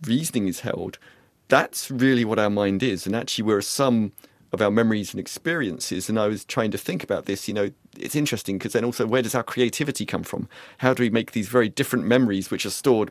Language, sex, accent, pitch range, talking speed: English, male, British, 100-125 Hz, 235 wpm